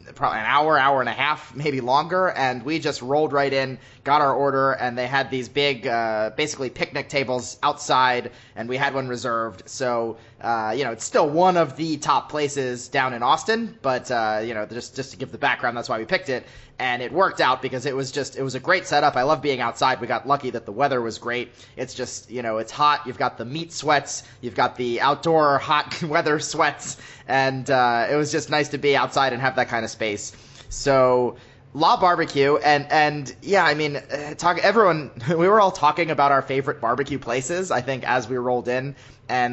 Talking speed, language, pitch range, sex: 220 wpm, English, 120-145 Hz, male